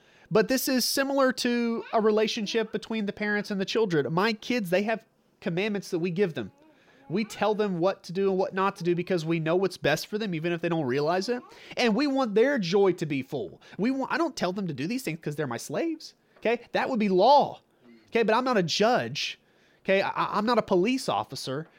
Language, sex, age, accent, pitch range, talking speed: English, male, 30-49, American, 175-230 Hz, 235 wpm